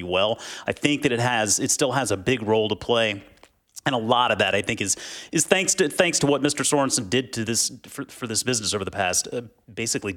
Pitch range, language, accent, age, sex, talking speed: 105-135 Hz, English, American, 30-49, male, 250 wpm